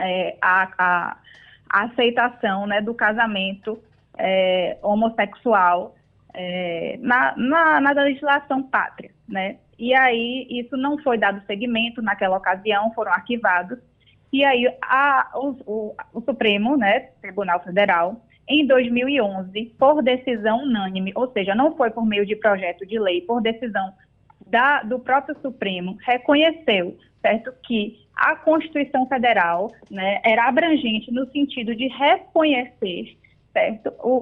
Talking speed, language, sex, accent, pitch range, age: 130 wpm, Portuguese, female, Brazilian, 210-280 Hz, 20-39